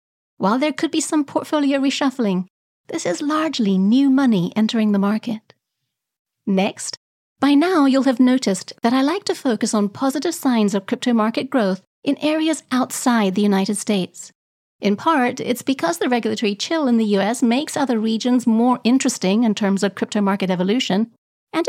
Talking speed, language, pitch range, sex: 170 wpm, English, 210-280 Hz, female